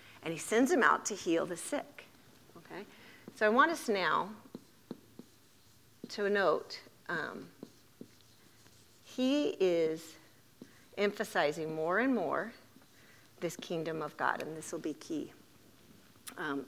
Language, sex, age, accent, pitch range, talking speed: English, female, 40-59, American, 155-205 Hz, 120 wpm